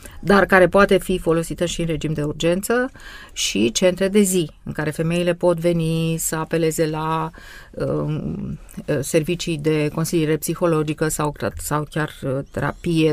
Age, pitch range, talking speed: 30-49, 150-185 Hz, 135 wpm